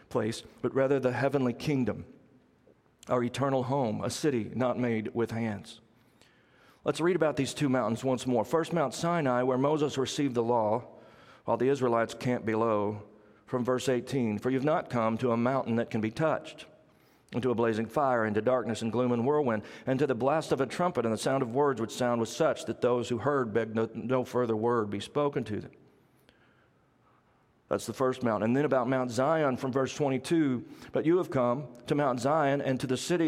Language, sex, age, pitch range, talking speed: English, male, 40-59, 115-140 Hz, 200 wpm